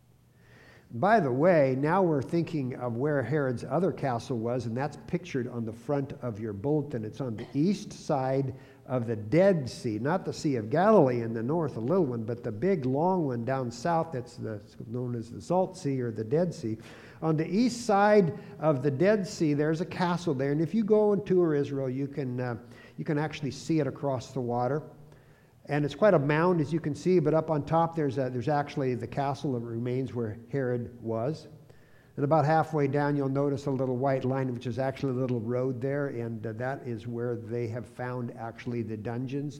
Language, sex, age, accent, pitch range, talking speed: English, male, 50-69, American, 120-160 Hz, 210 wpm